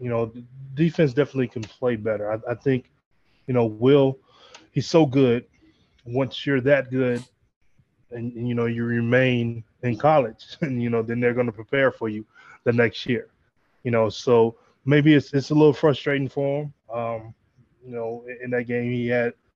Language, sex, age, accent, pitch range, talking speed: English, male, 20-39, American, 115-130 Hz, 185 wpm